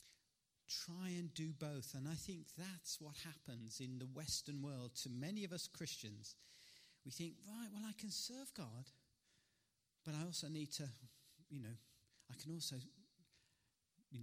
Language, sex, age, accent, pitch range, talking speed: Danish, male, 40-59, British, 130-165 Hz, 160 wpm